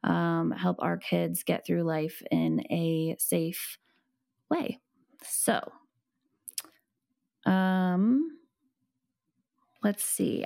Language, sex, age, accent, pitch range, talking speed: English, female, 20-39, American, 165-200 Hz, 85 wpm